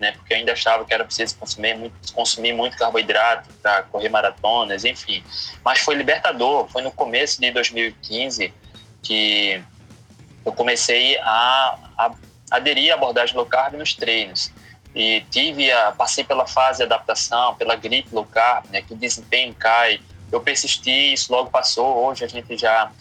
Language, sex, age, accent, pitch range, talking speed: Portuguese, male, 20-39, Brazilian, 110-125 Hz, 170 wpm